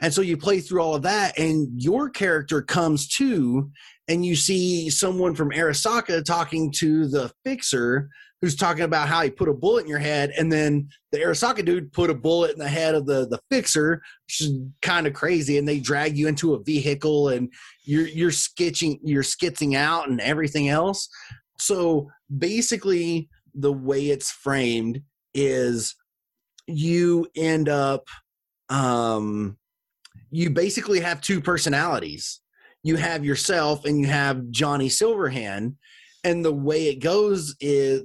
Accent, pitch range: American, 140-170 Hz